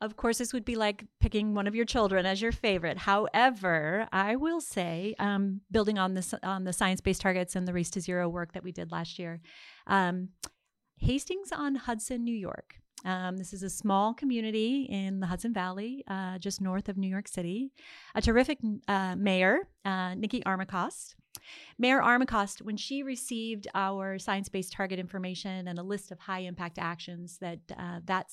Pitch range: 180-220 Hz